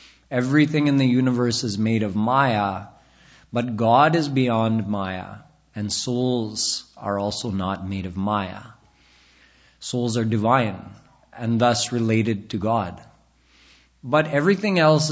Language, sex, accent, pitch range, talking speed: English, male, American, 105-135 Hz, 125 wpm